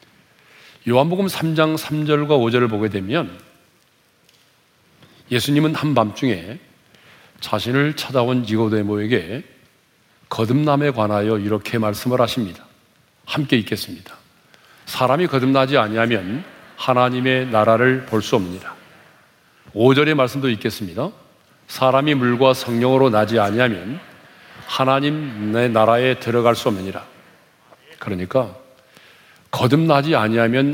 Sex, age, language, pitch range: male, 40-59, Korean, 110-135 Hz